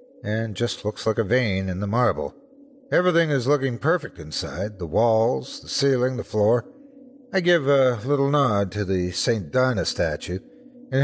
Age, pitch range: 50-69, 110-175 Hz